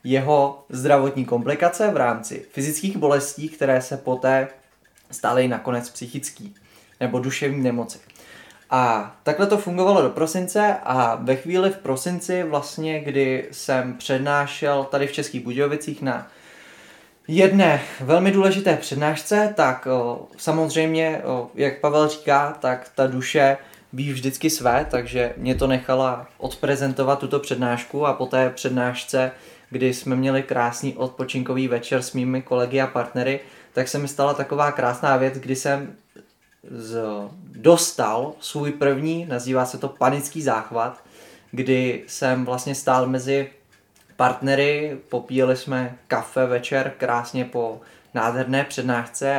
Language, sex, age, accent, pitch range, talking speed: Czech, male, 20-39, native, 130-150 Hz, 130 wpm